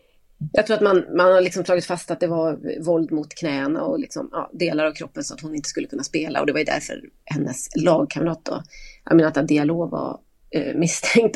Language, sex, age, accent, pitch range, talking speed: Swedish, female, 30-49, native, 165-220 Hz, 215 wpm